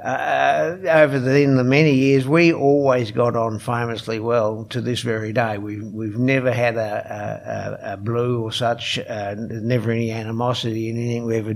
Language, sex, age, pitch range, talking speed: English, male, 60-79, 115-135 Hz, 180 wpm